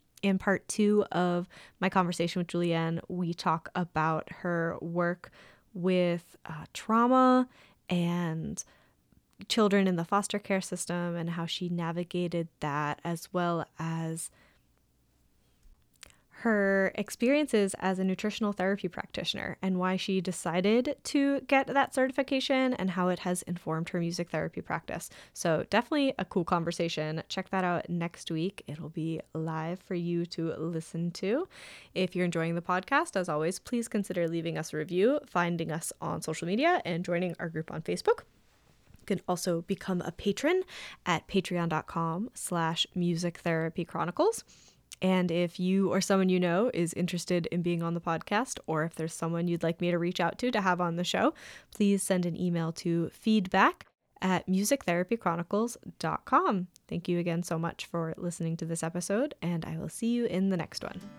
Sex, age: female, 10-29